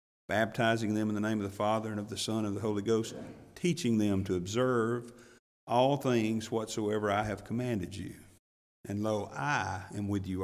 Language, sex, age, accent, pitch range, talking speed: English, male, 50-69, American, 105-135 Hz, 195 wpm